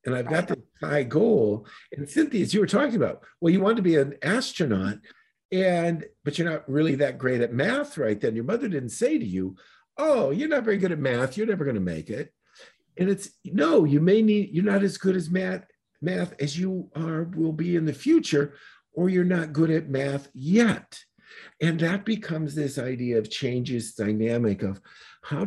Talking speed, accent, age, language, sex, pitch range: 205 wpm, American, 50-69, English, male, 110-170 Hz